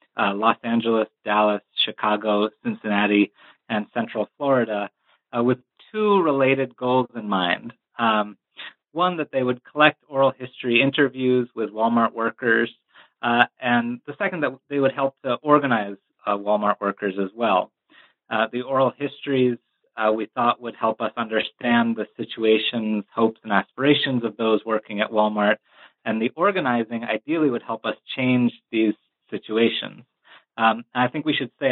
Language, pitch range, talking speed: English, 110-135 Hz, 150 wpm